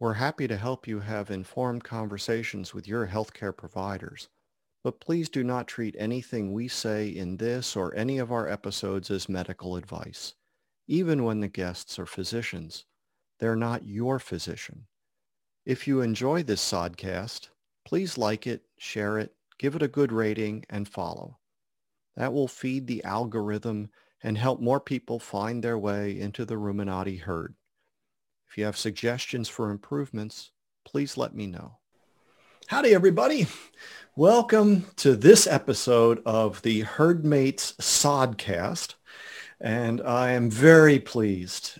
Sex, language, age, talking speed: male, English, 50-69, 140 wpm